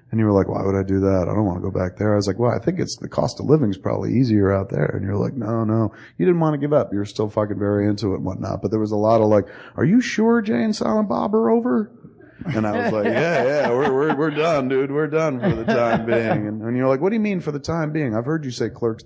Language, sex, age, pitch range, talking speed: English, male, 30-49, 105-160 Hz, 315 wpm